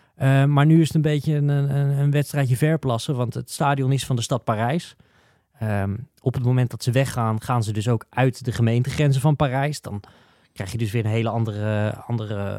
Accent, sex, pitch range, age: Dutch, male, 115-150 Hz, 20-39